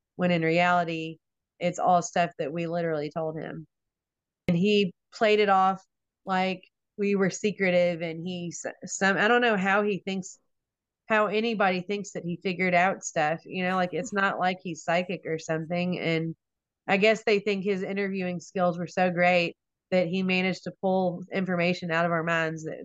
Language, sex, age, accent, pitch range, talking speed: English, female, 30-49, American, 170-195 Hz, 180 wpm